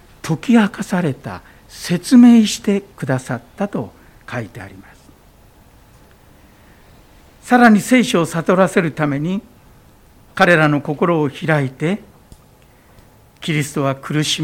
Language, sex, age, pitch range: Japanese, male, 60-79, 145-205 Hz